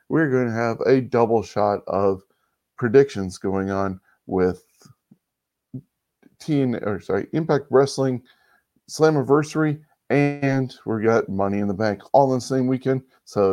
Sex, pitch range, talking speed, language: male, 105-140 Hz, 135 wpm, English